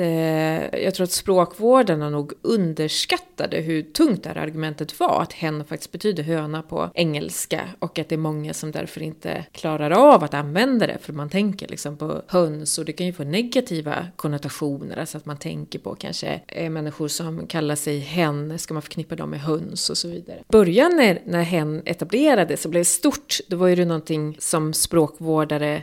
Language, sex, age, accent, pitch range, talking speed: Swedish, female, 30-49, native, 155-205 Hz, 190 wpm